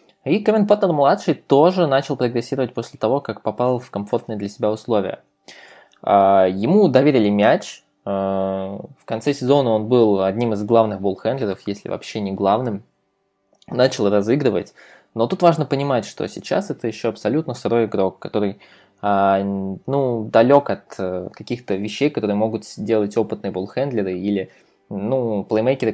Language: Russian